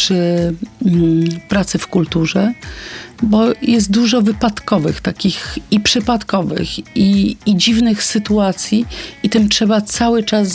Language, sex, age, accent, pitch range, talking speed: Polish, female, 40-59, native, 180-215 Hz, 115 wpm